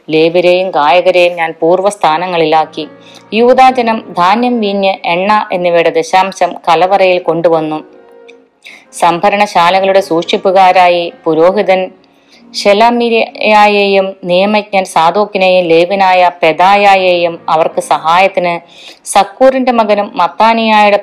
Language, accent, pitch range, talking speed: Malayalam, native, 170-210 Hz, 75 wpm